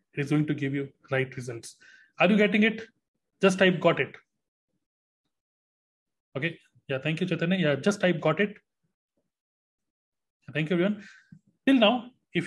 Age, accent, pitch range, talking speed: 30-49, native, 155-200 Hz, 150 wpm